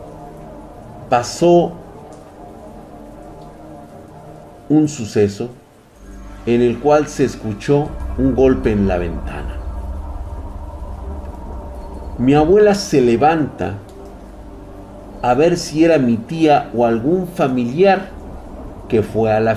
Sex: male